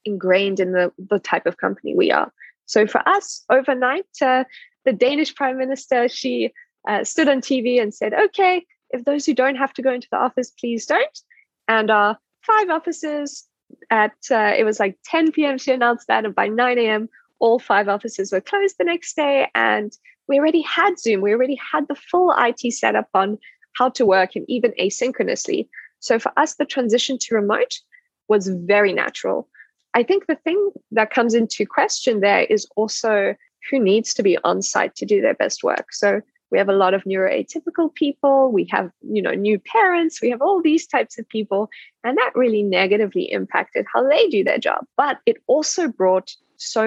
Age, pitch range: 10-29, 210-315 Hz